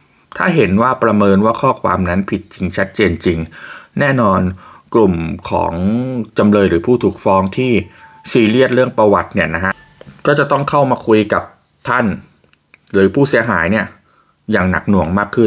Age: 20-39